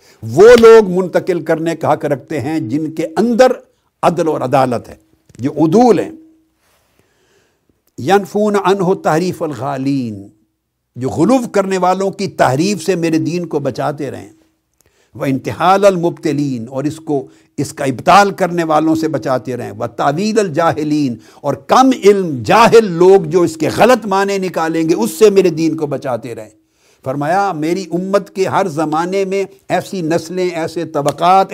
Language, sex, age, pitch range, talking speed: Urdu, male, 60-79, 145-195 Hz, 155 wpm